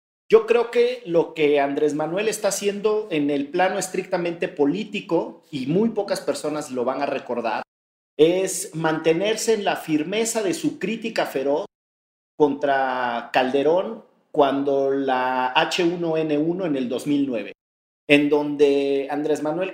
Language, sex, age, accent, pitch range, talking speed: Spanish, male, 50-69, Mexican, 140-180 Hz, 130 wpm